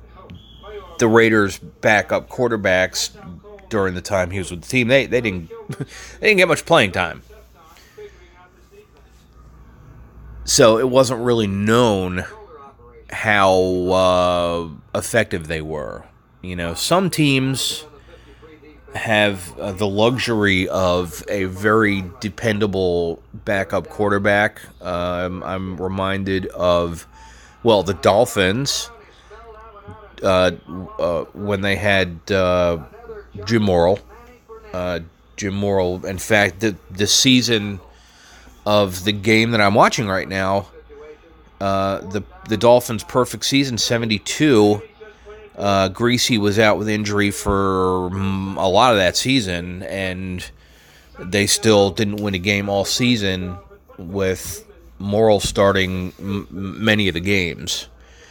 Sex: male